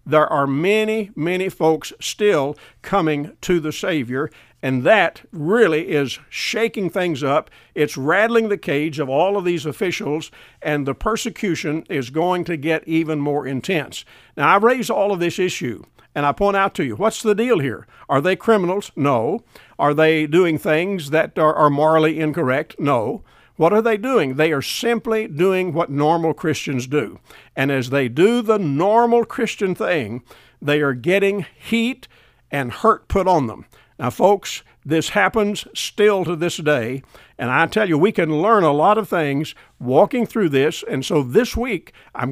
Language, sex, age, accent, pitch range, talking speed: English, male, 60-79, American, 145-200 Hz, 175 wpm